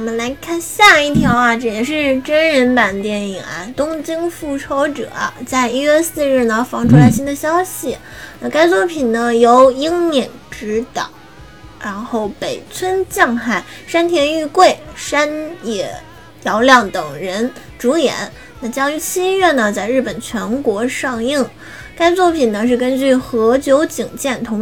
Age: 10-29